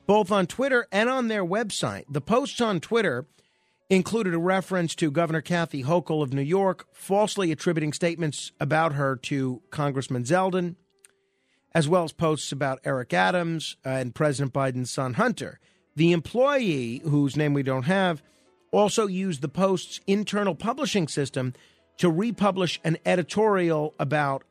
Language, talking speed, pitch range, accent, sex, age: English, 145 wpm, 140-185 Hz, American, male, 50-69